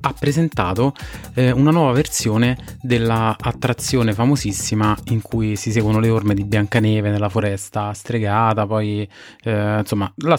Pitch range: 100-120 Hz